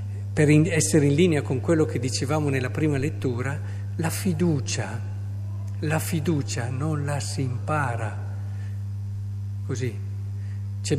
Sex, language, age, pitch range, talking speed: male, Italian, 50-69, 100-150 Hz, 115 wpm